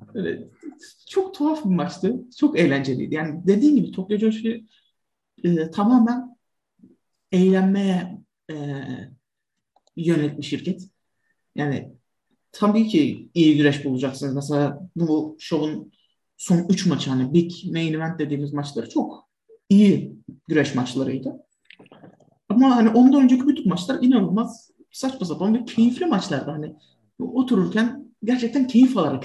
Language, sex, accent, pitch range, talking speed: Turkish, male, native, 160-215 Hz, 115 wpm